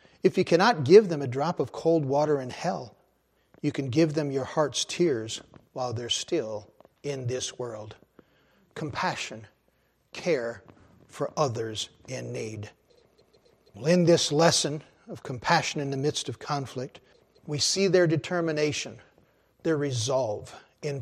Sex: male